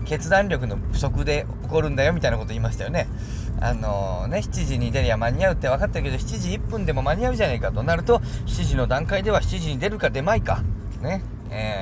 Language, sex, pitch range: Japanese, male, 110-155 Hz